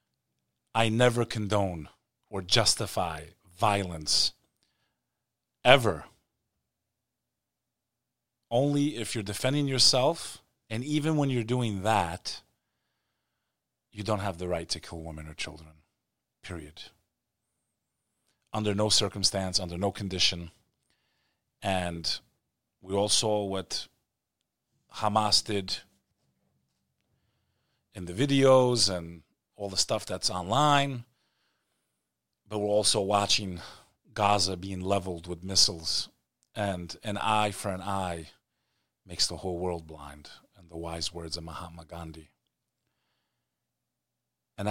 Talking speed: 105 wpm